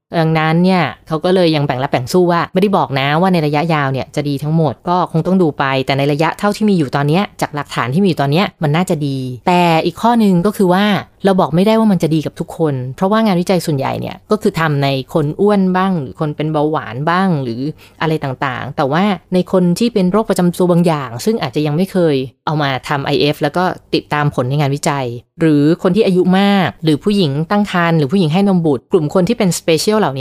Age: 20-39